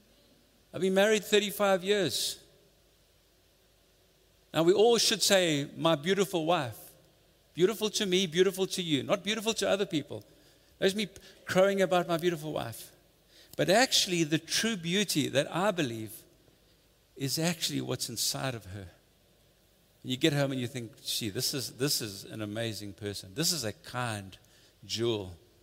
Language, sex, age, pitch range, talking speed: English, male, 50-69, 120-175 Hz, 145 wpm